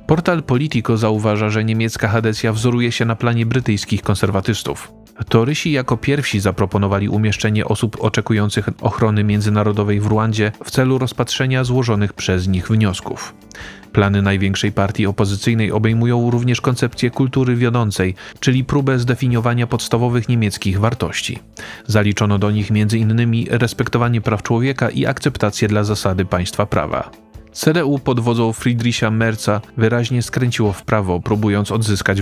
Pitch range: 105-120 Hz